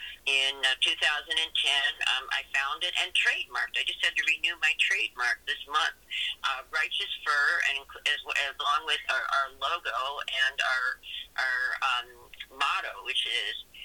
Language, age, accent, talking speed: English, 50-69, American, 150 wpm